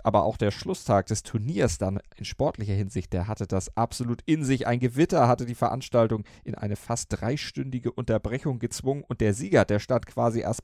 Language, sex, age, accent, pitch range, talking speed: German, male, 30-49, German, 100-125 Hz, 190 wpm